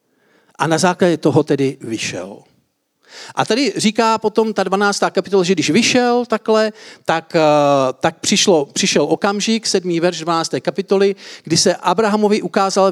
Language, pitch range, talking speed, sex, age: Czech, 155-210 Hz, 140 wpm, male, 50-69